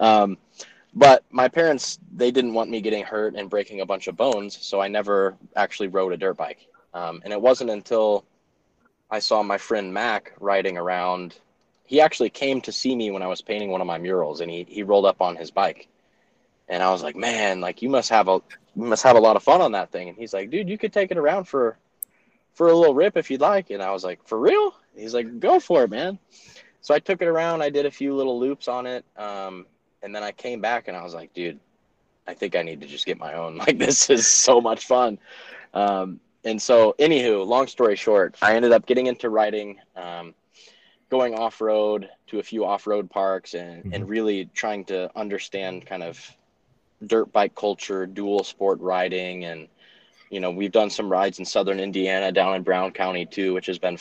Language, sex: English, male